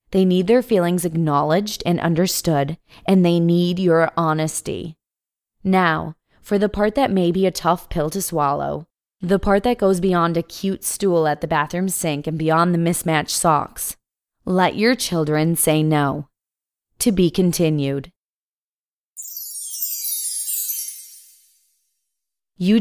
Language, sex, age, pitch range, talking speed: English, female, 20-39, 155-185 Hz, 130 wpm